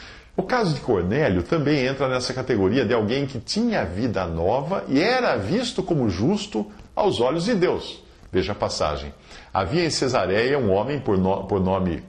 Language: English